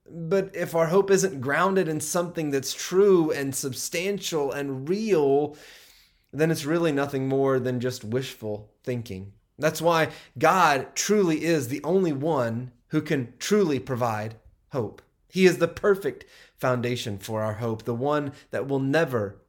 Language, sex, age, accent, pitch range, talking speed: English, male, 30-49, American, 110-155 Hz, 150 wpm